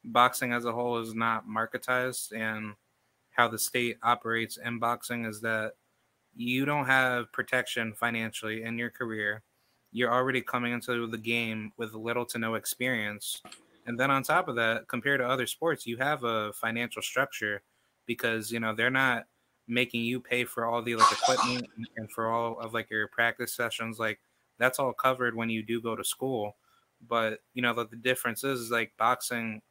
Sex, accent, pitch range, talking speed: male, American, 115-125 Hz, 185 wpm